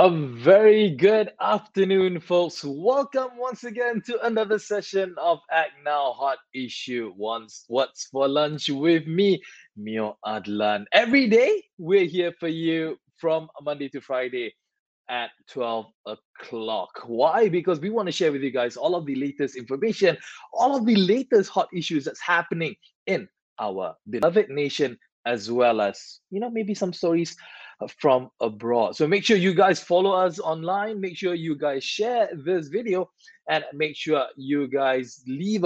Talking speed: 160 wpm